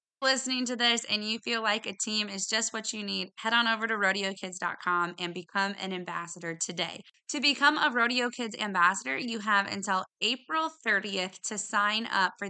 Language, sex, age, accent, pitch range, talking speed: English, female, 20-39, American, 185-235 Hz, 185 wpm